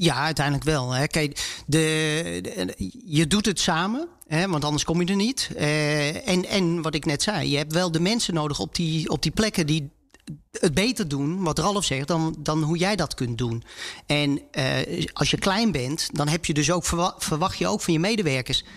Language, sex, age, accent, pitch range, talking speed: English, male, 40-59, Dutch, 145-180 Hz, 215 wpm